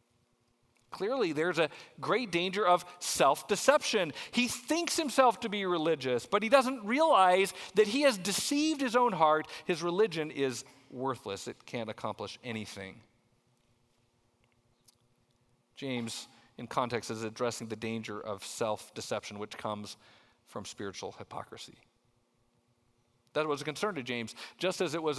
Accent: American